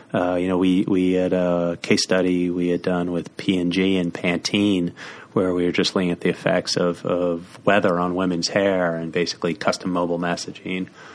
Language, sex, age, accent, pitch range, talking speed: English, male, 30-49, American, 90-100 Hz, 190 wpm